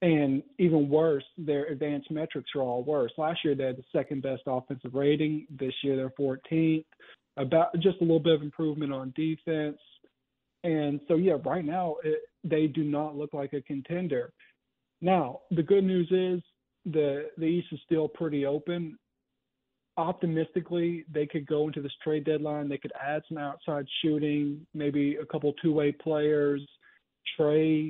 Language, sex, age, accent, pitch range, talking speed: English, male, 40-59, American, 140-165 Hz, 160 wpm